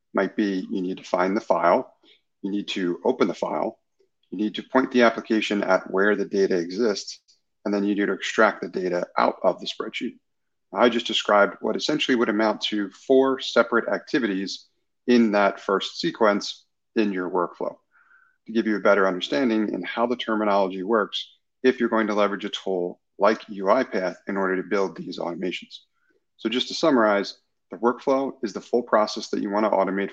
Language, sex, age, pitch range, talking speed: English, male, 40-59, 100-120 Hz, 190 wpm